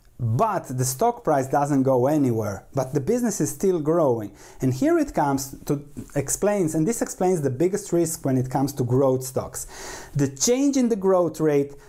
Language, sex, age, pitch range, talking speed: English, male, 30-49, 130-170 Hz, 185 wpm